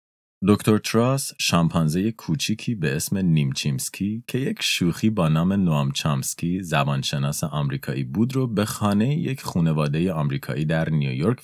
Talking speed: 130 wpm